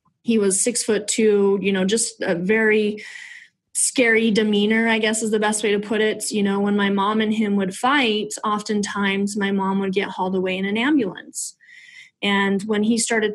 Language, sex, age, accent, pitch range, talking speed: English, female, 20-39, American, 195-225 Hz, 200 wpm